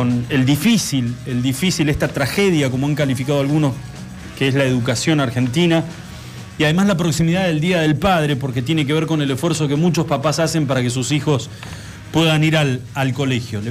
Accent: Argentinian